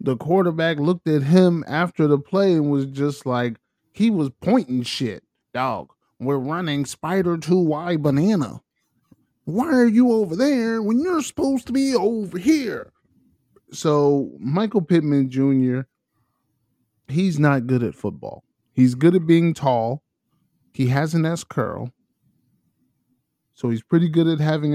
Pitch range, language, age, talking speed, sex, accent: 130-165 Hz, English, 20-39, 145 wpm, male, American